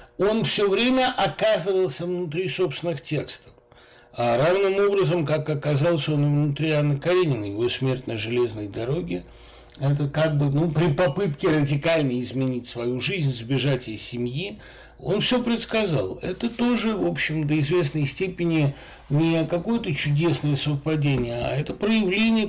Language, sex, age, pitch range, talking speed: Russian, male, 60-79, 130-180 Hz, 135 wpm